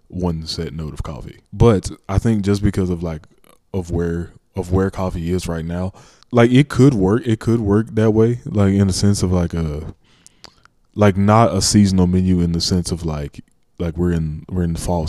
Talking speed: 210 wpm